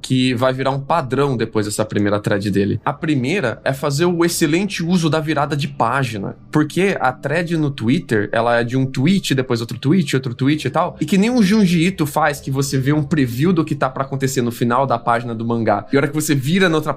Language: Portuguese